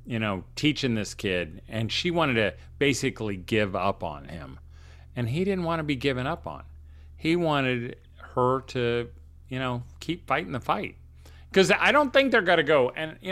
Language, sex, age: English, male, 40-59